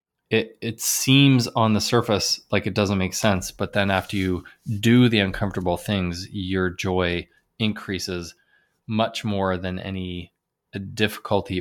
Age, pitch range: 20-39, 95-110 Hz